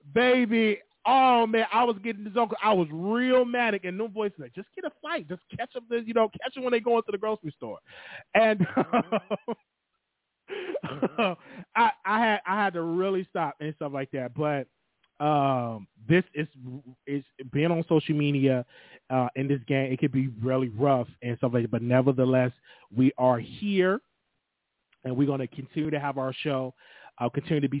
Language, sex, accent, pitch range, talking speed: English, male, American, 125-165 Hz, 190 wpm